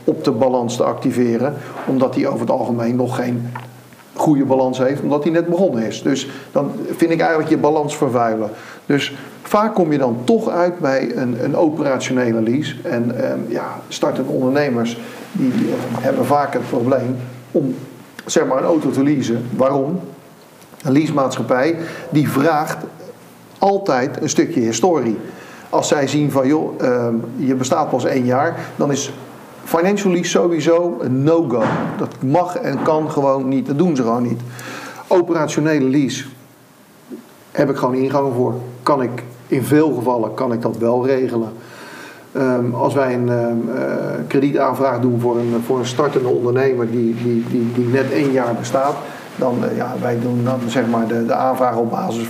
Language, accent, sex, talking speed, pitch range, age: Dutch, Dutch, male, 170 wpm, 120-150 Hz, 50-69